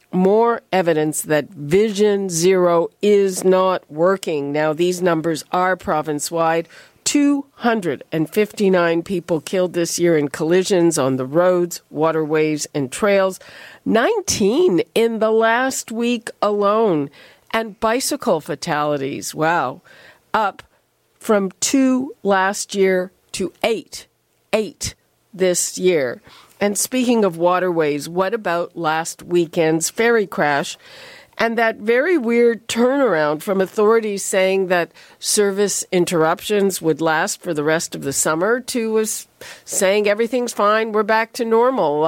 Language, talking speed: English, 120 wpm